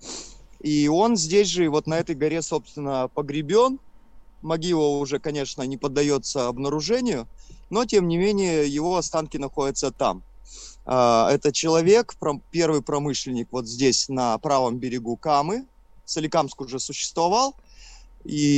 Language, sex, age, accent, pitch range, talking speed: Russian, male, 30-49, native, 130-165 Hz, 130 wpm